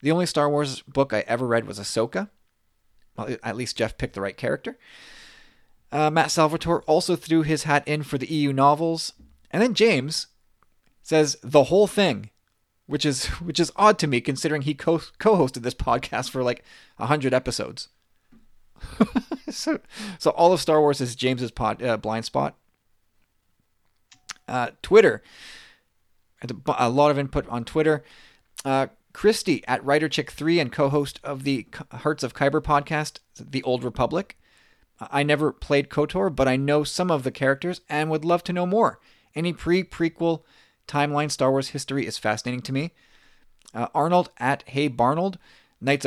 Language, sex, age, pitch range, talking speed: English, male, 20-39, 125-160 Hz, 160 wpm